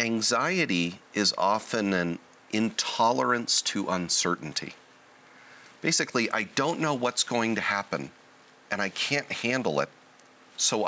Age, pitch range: 40-59, 90-115 Hz